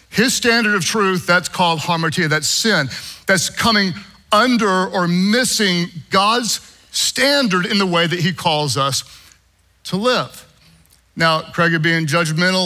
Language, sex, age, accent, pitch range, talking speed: English, male, 50-69, American, 155-210 Hz, 135 wpm